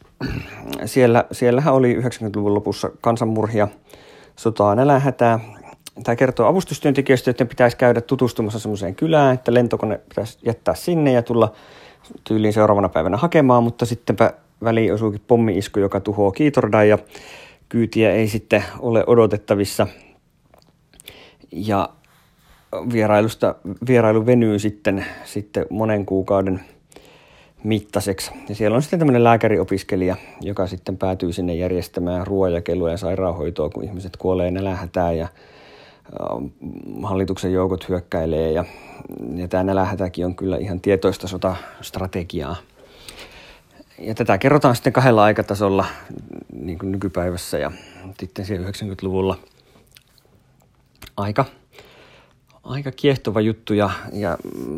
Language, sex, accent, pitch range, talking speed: Finnish, male, native, 95-120 Hz, 105 wpm